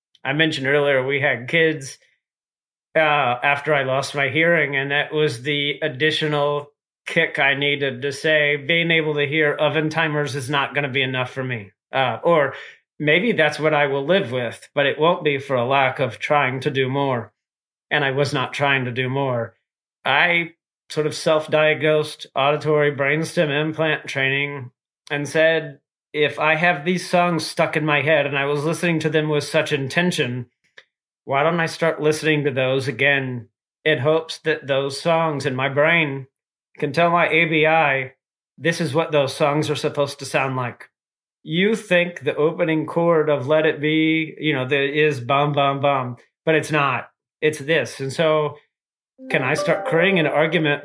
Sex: male